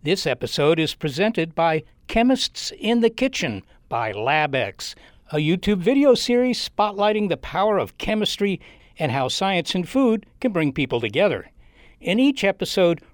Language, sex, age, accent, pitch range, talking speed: English, male, 60-79, American, 155-210 Hz, 145 wpm